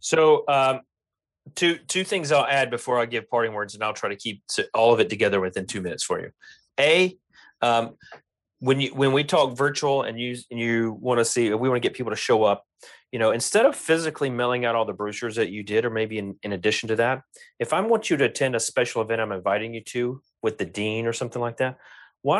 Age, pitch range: 30-49, 110-140 Hz